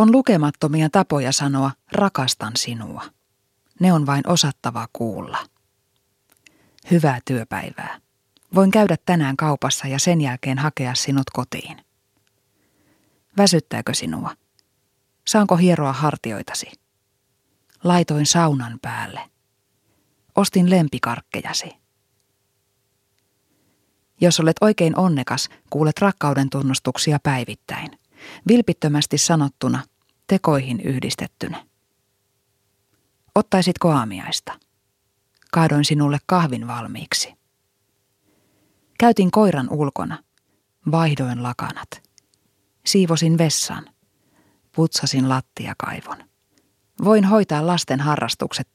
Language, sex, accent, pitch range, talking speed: Finnish, female, native, 100-165 Hz, 80 wpm